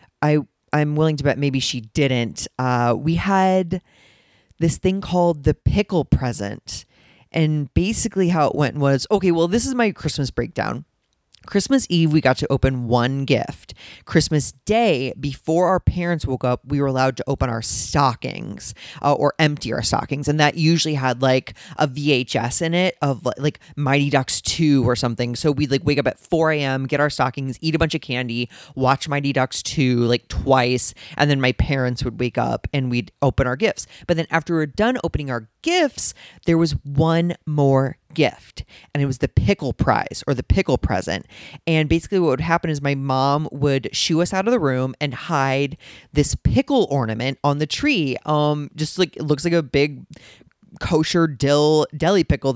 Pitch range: 130-165 Hz